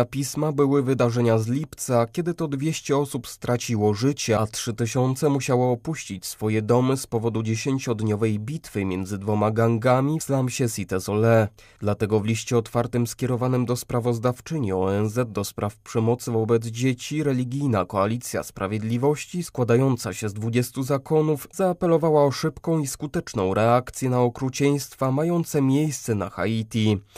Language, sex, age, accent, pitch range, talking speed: Polish, male, 20-39, native, 110-140 Hz, 135 wpm